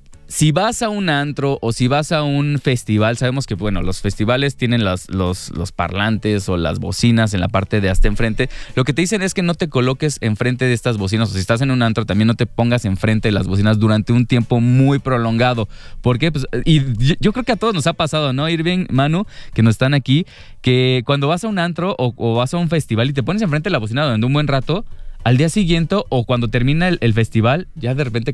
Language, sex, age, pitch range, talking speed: English, male, 20-39, 110-145 Hz, 250 wpm